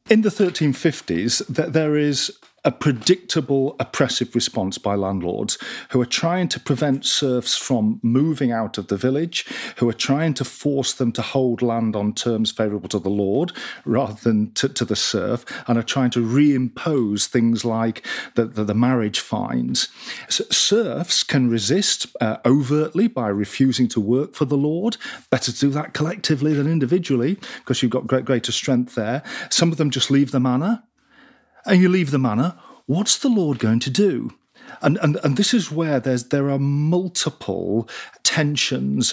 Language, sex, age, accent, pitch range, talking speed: English, male, 40-59, British, 120-165 Hz, 170 wpm